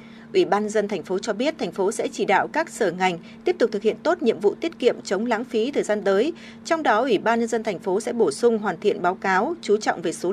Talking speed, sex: 285 wpm, female